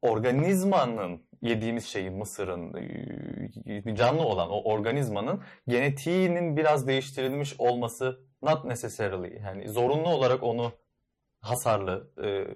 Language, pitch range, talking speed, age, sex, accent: Turkish, 110-145 Hz, 85 wpm, 30-49, male, native